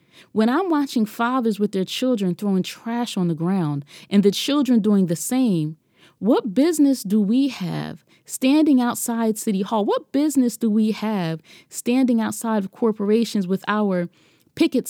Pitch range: 180-240 Hz